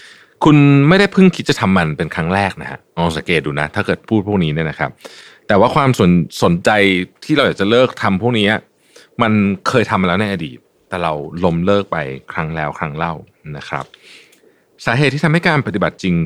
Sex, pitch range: male, 85-120 Hz